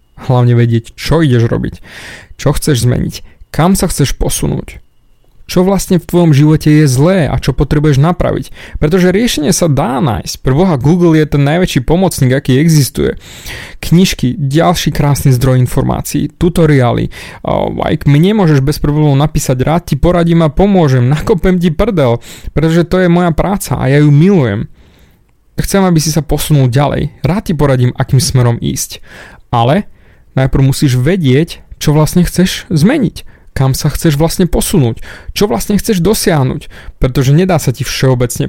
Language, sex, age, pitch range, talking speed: Slovak, male, 20-39, 130-165 Hz, 155 wpm